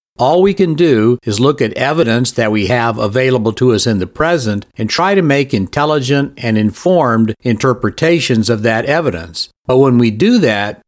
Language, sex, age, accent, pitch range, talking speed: English, male, 60-79, American, 110-135 Hz, 180 wpm